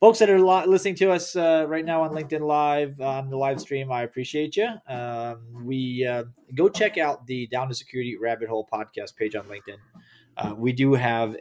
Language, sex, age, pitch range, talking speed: English, male, 20-39, 120-155 Hz, 205 wpm